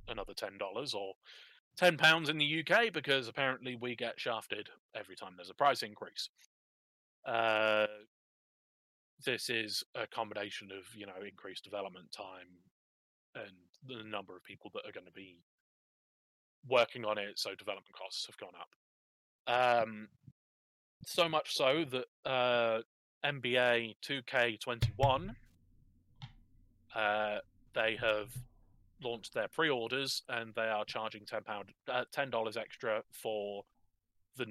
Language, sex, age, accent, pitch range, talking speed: English, male, 20-39, British, 95-125 Hz, 125 wpm